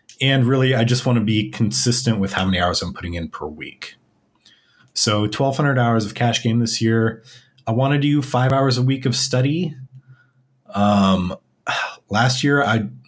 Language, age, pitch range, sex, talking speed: English, 30-49, 105-130 Hz, male, 180 wpm